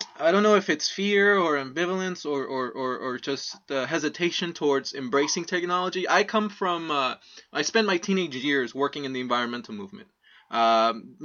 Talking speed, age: 175 wpm, 20-39